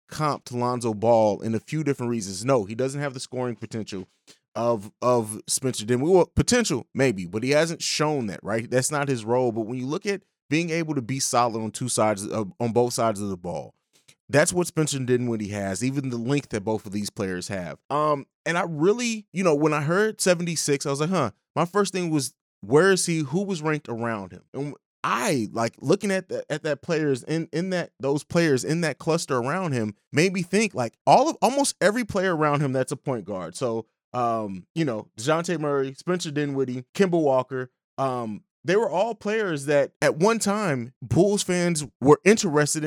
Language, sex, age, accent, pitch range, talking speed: English, male, 30-49, American, 120-160 Hz, 210 wpm